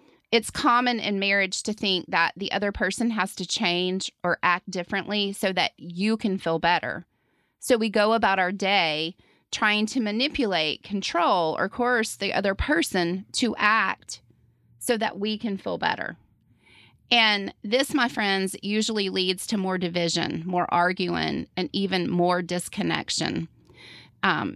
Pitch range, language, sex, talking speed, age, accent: 185-230 Hz, English, female, 150 wpm, 30-49, American